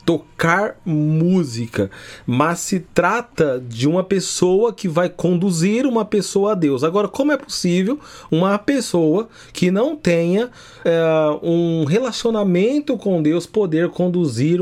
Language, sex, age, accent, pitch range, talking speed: Portuguese, male, 30-49, Brazilian, 135-180 Hz, 125 wpm